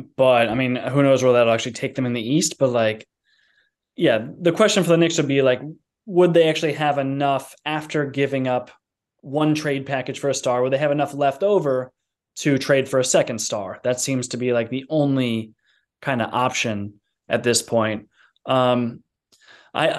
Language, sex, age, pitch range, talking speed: English, male, 20-39, 130-150 Hz, 195 wpm